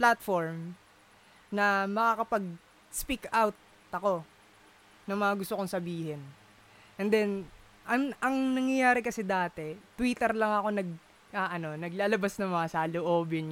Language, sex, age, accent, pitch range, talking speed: Filipino, female, 20-39, native, 155-205 Hz, 115 wpm